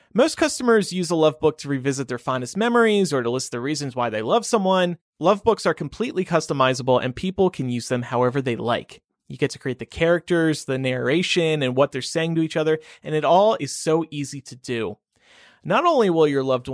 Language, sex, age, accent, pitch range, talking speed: English, male, 30-49, American, 125-165 Hz, 220 wpm